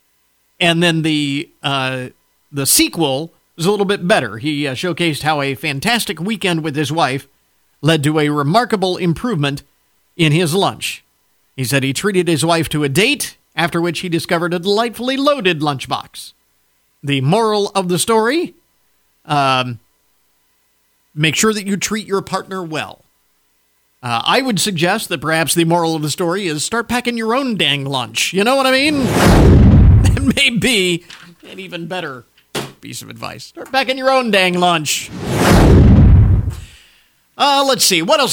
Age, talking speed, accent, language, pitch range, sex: 50-69, 160 wpm, American, English, 145-205 Hz, male